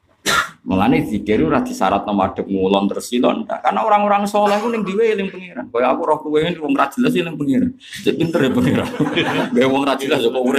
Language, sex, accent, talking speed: Indonesian, male, native, 60 wpm